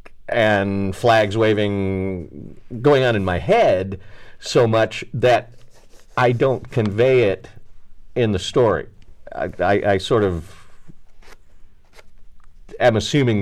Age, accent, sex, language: 50-69, American, male, English